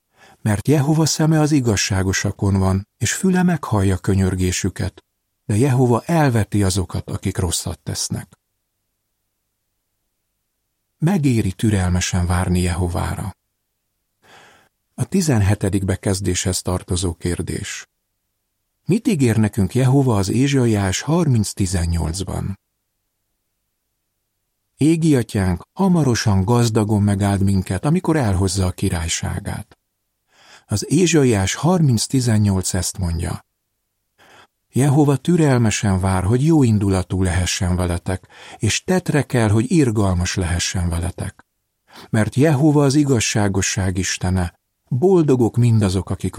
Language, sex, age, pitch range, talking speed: Hungarian, male, 50-69, 95-120 Hz, 90 wpm